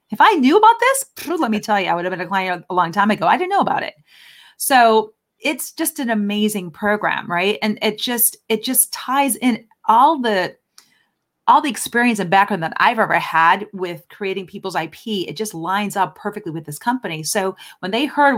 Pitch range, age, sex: 175-220 Hz, 30-49, female